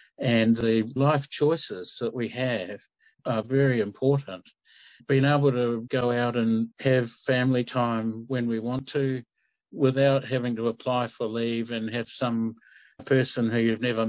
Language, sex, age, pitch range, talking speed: English, male, 60-79, 115-140 Hz, 155 wpm